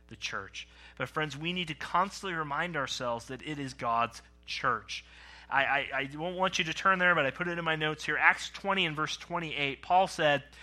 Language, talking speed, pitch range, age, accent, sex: English, 220 wpm, 140-185 Hz, 30-49, American, male